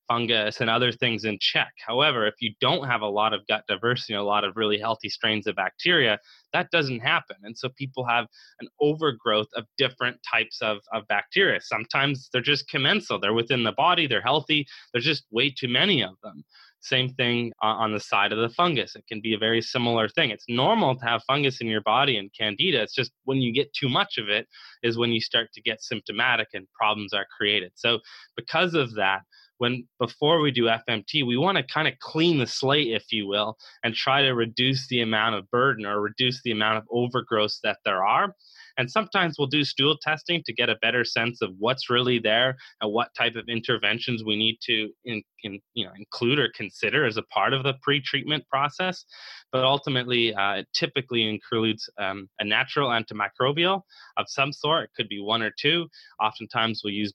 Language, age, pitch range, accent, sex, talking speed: English, 20-39, 110-135 Hz, American, male, 210 wpm